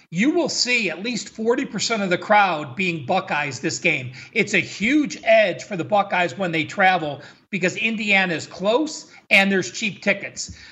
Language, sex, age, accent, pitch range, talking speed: English, male, 40-59, American, 170-215 Hz, 175 wpm